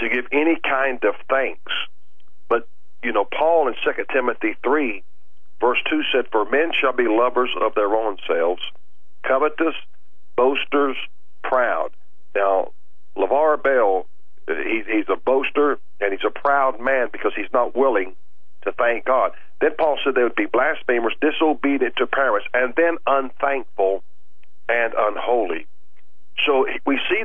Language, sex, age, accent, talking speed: English, male, 50-69, American, 145 wpm